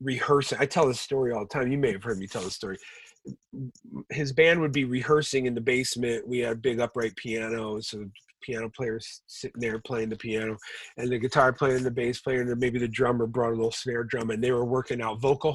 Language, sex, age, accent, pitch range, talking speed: English, male, 40-59, American, 115-135 Hz, 245 wpm